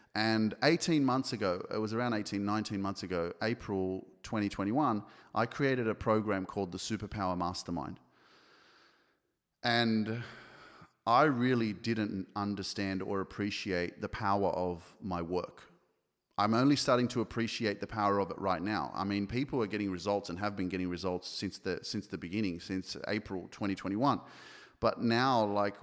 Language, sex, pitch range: English, male, 100-115 Hz